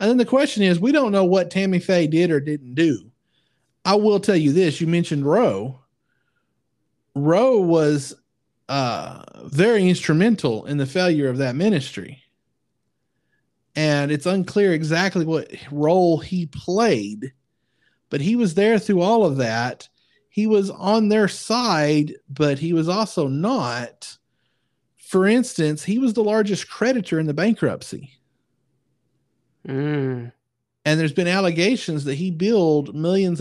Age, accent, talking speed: 40-59, American, 140 wpm